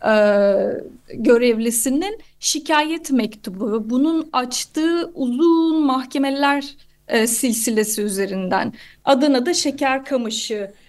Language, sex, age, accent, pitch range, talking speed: Turkish, female, 30-49, native, 225-270 Hz, 90 wpm